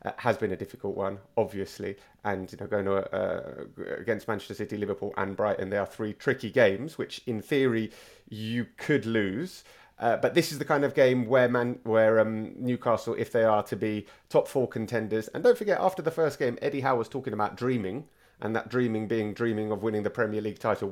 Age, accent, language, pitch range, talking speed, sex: 30-49, British, English, 110-150 Hz, 210 wpm, male